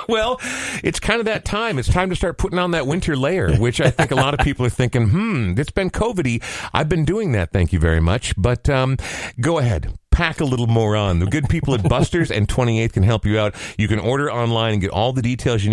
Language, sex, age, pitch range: English, male, 40-59, 100-130 Hz